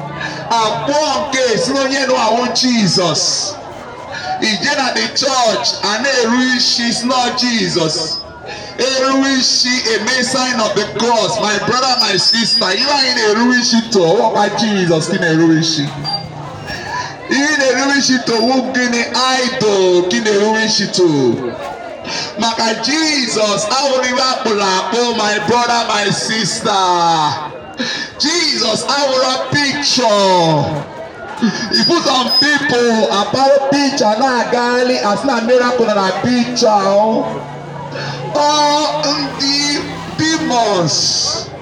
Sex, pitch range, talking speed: male, 210-270 Hz, 95 wpm